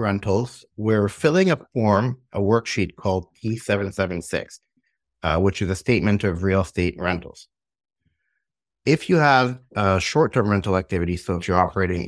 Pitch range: 85-105 Hz